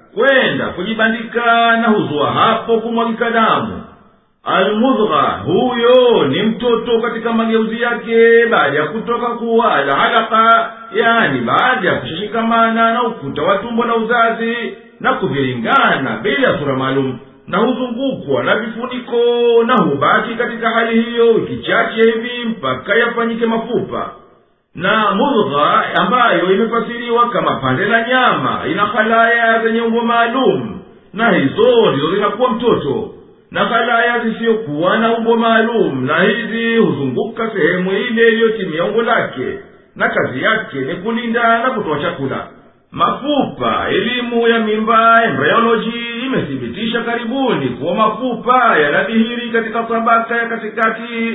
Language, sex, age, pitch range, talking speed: Swahili, male, 50-69, 215-235 Hz, 115 wpm